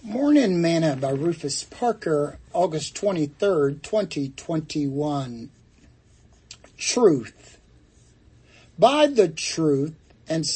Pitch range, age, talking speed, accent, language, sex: 140-185 Hz, 60-79, 75 wpm, American, English, male